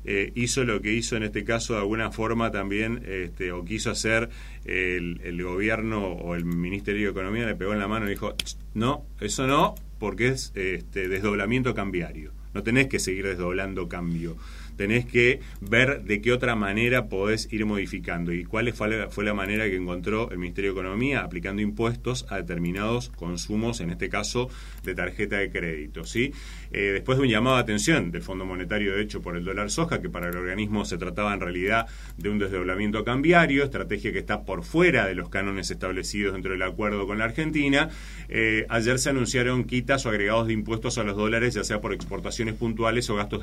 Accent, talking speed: Argentinian, 195 wpm